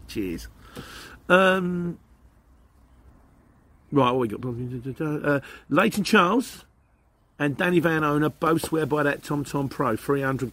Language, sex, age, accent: English, male, 40-59, British